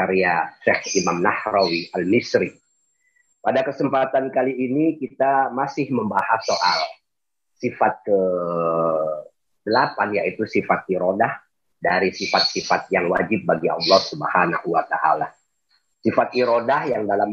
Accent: native